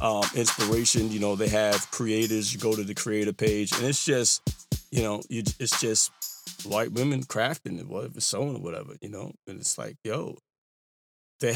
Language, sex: English, male